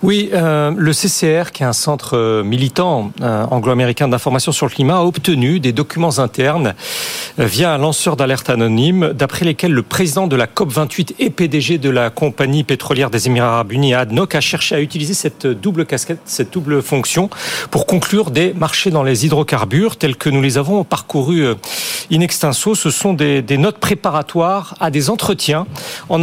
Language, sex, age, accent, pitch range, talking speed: French, male, 40-59, French, 135-180 Hz, 185 wpm